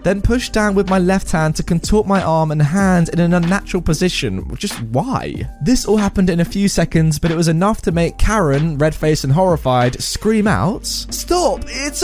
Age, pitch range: 20-39, 140-190 Hz